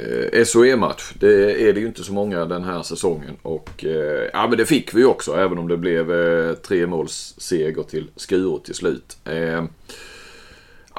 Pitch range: 90-115 Hz